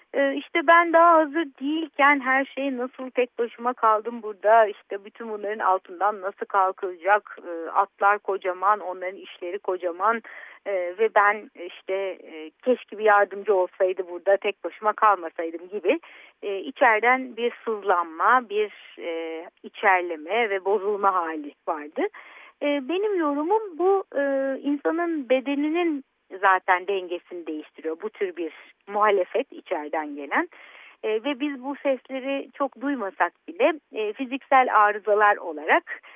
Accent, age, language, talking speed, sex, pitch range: native, 60-79, Turkish, 115 wpm, female, 185-280 Hz